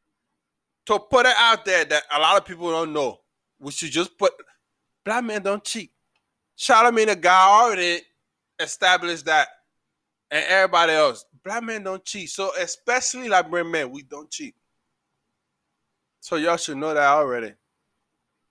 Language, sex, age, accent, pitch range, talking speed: English, male, 20-39, American, 155-210 Hz, 150 wpm